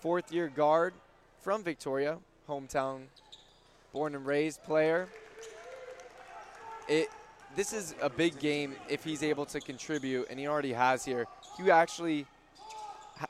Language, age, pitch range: English, 20-39, 130-170 Hz